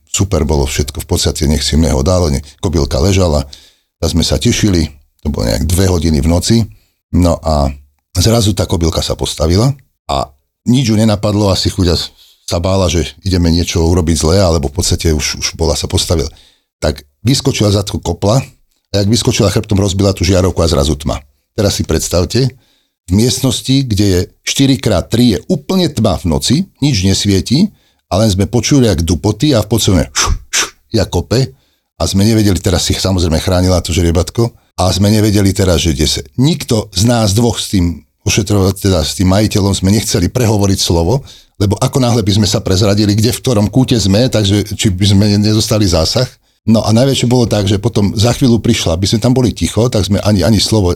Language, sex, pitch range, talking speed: Slovak, male, 85-110 Hz, 185 wpm